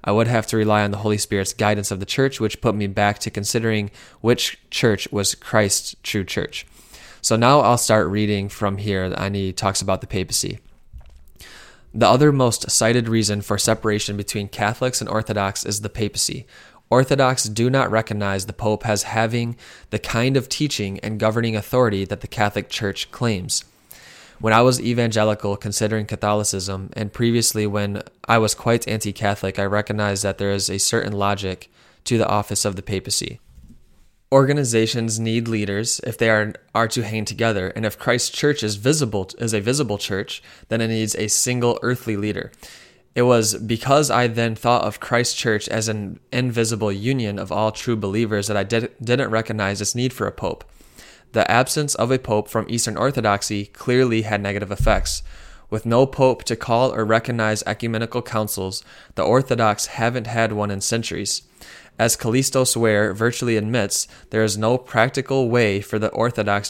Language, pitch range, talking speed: English, 105-120 Hz, 175 wpm